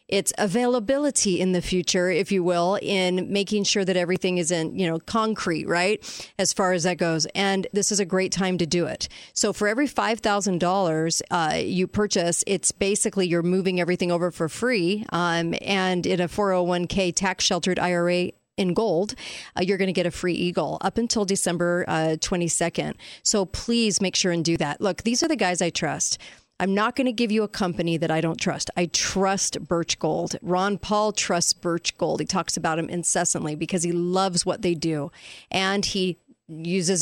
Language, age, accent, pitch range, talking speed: English, 40-59, American, 175-205 Hz, 185 wpm